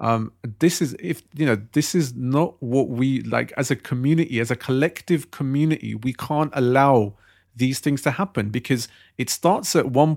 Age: 40-59